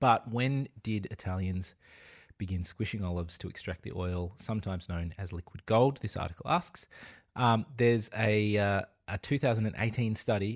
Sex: male